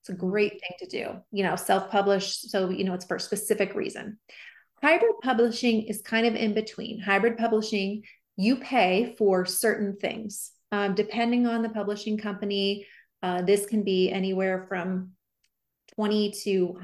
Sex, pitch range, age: female, 195-235 Hz, 30-49